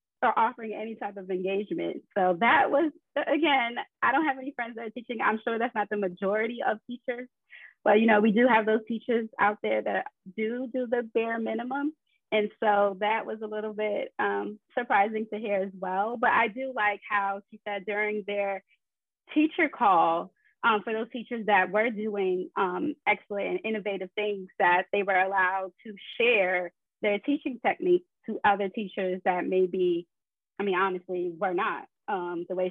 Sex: female